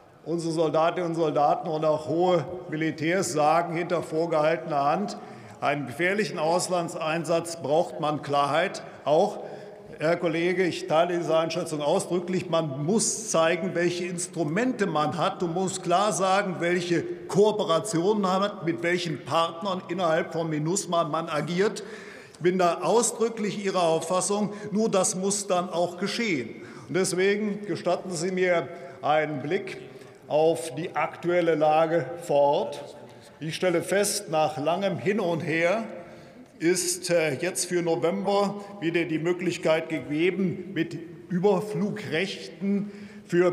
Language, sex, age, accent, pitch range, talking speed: German, male, 50-69, German, 165-195 Hz, 130 wpm